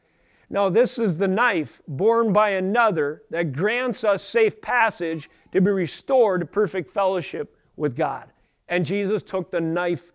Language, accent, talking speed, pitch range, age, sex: English, American, 155 wpm, 155-205 Hz, 40-59, male